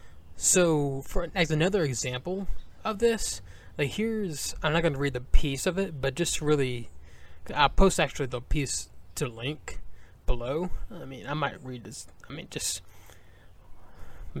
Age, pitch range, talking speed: 20-39, 95-150 Hz, 165 wpm